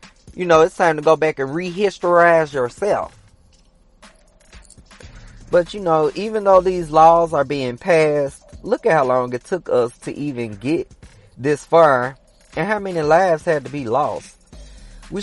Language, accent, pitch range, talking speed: English, American, 135-175 Hz, 160 wpm